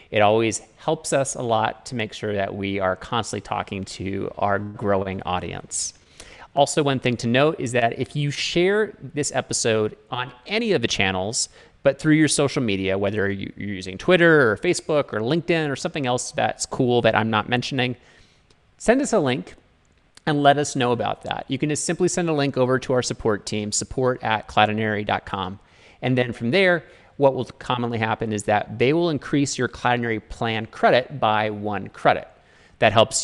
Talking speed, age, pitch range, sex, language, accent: 190 wpm, 30-49, 100-135 Hz, male, English, American